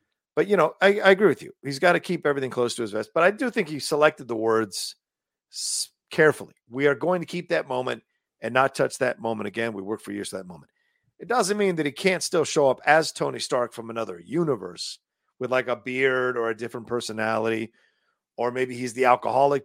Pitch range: 115-170 Hz